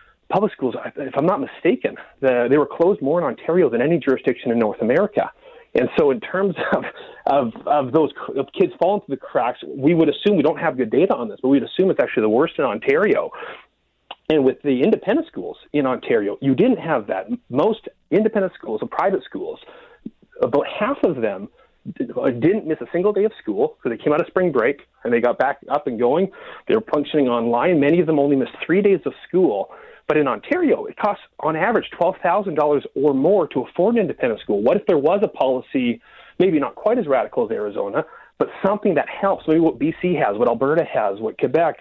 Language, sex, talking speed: English, male, 210 wpm